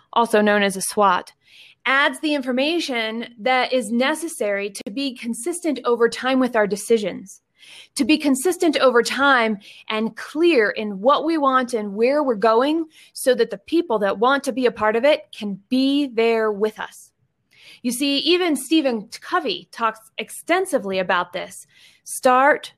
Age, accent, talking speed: 30-49, American, 160 wpm